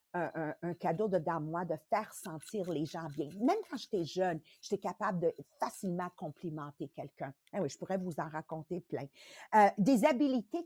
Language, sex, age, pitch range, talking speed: English, female, 50-69, 180-255 Hz, 185 wpm